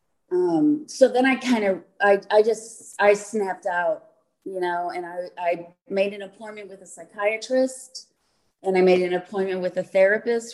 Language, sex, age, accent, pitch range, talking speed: English, female, 30-49, American, 180-230 Hz, 175 wpm